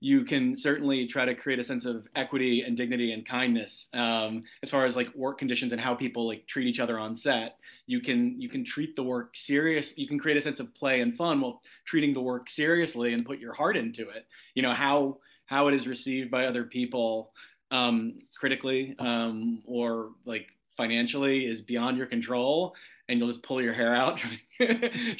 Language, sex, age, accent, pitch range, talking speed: English, male, 30-49, American, 120-165 Hz, 205 wpm